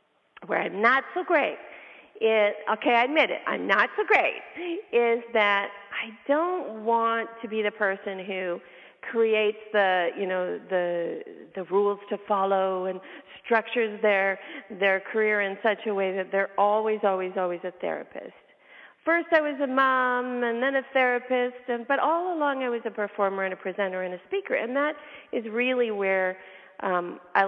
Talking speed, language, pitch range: 175 wpm, English, 190-250 Hz